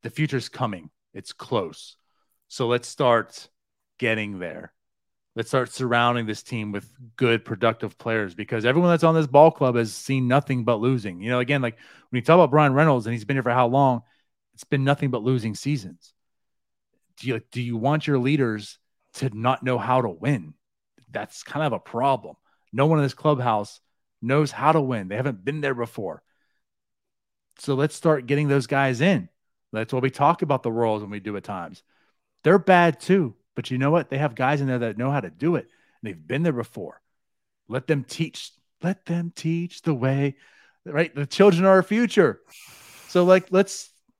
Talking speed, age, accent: 195 wpm, 30-49, American